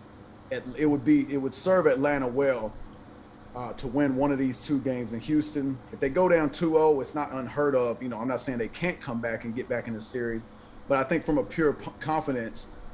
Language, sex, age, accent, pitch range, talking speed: English, male, 40-59, American, 120-150 Hz, 225 wpm